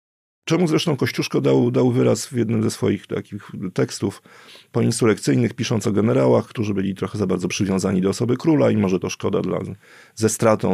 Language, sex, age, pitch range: Polish, male, 40-59, 90-115 Hz